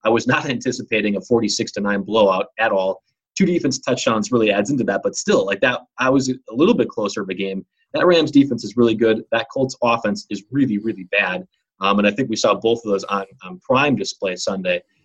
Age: 20-39